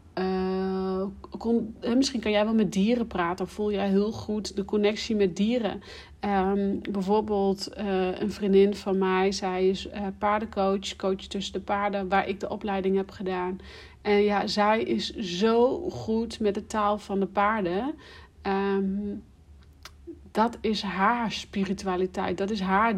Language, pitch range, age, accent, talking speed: Dutch, 190-215 Hz, 40-59, Dutch, 145 wpm